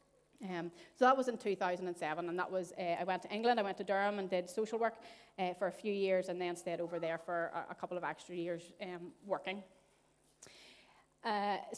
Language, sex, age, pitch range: English, female, 30-49, 175-205 Hz